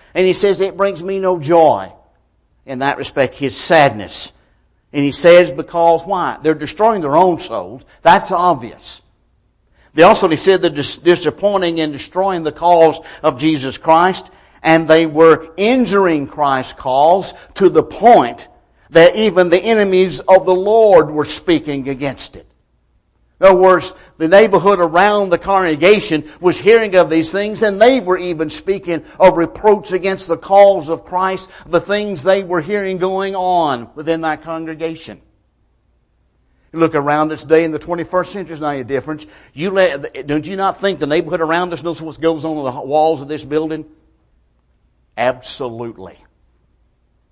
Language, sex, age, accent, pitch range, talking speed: English, male, 60-79, American, 145-185 Hz, 160 wpm